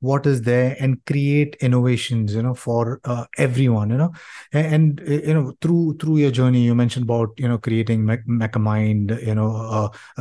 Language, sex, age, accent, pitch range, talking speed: English, male, 30-49, Indian, 115-155 Hz, 180 wpm